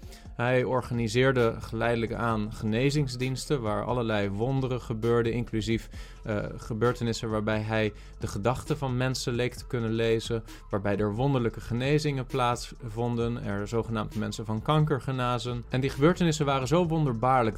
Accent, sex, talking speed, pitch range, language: Dutch, male, 135 wpm, 115-135 Hz, Dutch